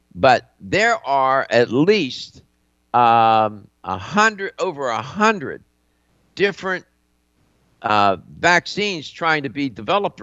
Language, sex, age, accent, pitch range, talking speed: English, male, 60-79, American, 95-145 Hz, 100 wpm